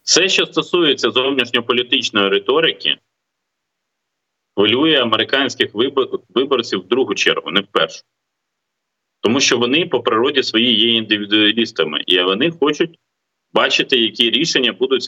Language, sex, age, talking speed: Ukrainian, male, 30-49, 115 wpm